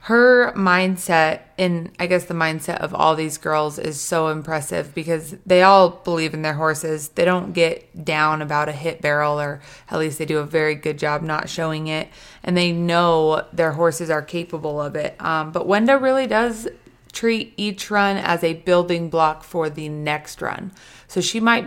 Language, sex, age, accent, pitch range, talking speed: English, female, 30-49, American, 160-190 Hz, 190 wpm